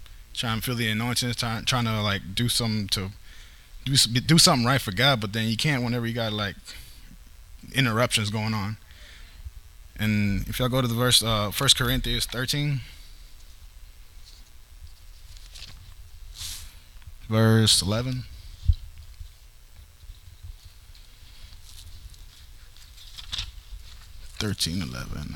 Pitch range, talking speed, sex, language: 85-120 Hz, 105 wpm, male, English